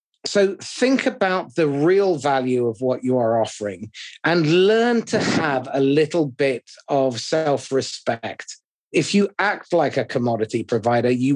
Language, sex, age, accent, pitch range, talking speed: English, male, 30-49, British, 135-180 Hz, 150 wpm